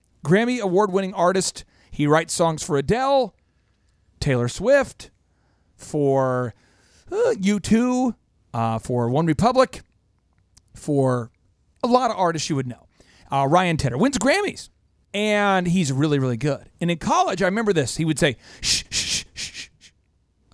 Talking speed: 145 wpm